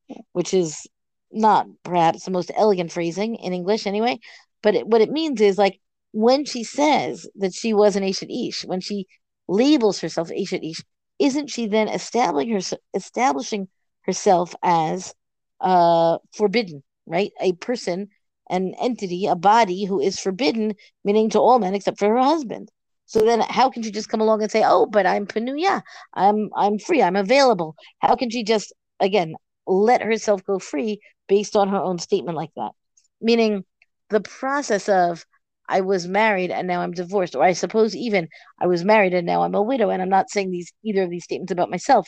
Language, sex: English, female